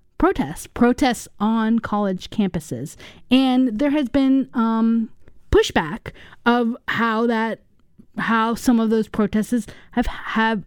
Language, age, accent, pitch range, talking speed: English, 30-49, American, 200-240 Hz, 120 wpm